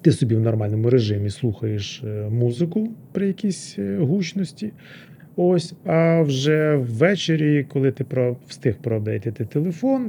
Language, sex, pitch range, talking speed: Ukrainian, male, 120-160 Hz, 120 wpm